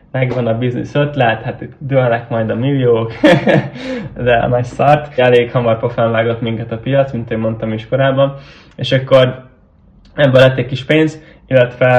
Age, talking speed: 10-29, 160 wpm